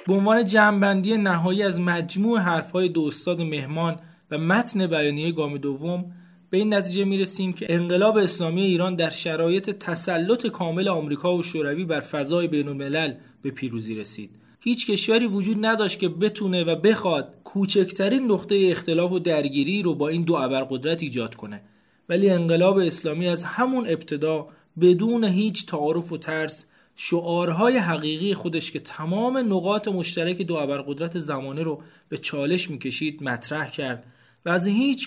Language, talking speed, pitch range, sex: Persian, 150 wpm, 150-185 Hz, male